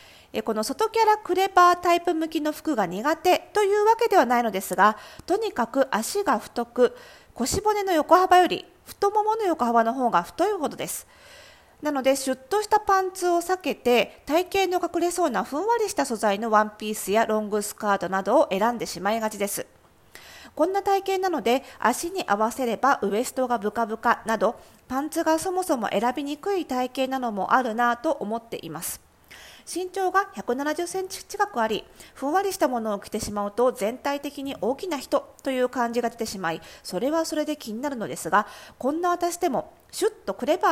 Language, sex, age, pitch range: Japanese, female, 40-59, 220-350 Hz